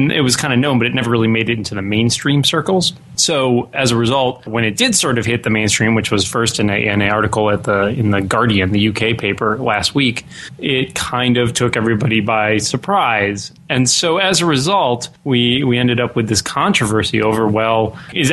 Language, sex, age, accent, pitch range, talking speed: English, male, 20-39, American, 110-135 Hz, 215 wpm